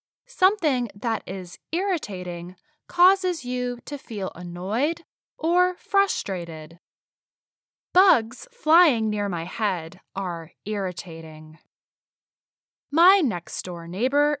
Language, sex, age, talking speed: English, female, 10-29, 90 wpm